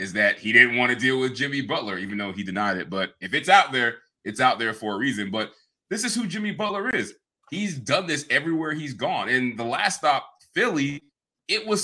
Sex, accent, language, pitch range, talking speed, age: male, American, English, 105-160 Hz, 235 wpm, 20-39